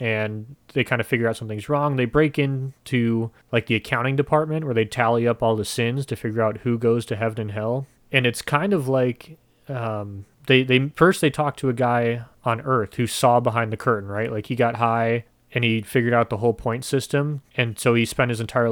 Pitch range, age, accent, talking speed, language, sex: 115-135 Hz, 30-49, American, 230 wpm, English, male